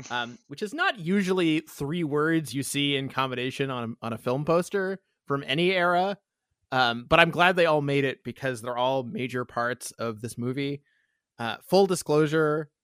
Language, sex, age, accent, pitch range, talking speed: English, male, 20-39, American, 125-155 Hz, 180 wpm